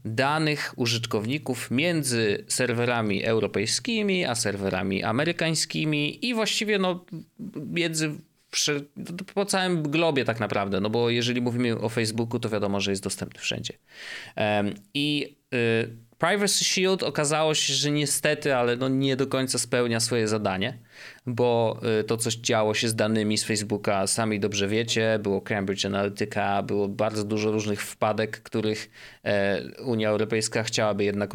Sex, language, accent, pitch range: male, Polish, native, 110-150 Hz